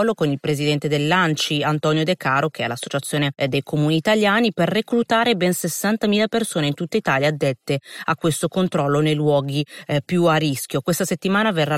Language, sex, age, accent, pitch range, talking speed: Italian, female, 30-49, native, 150-180 Hz, 180 wpm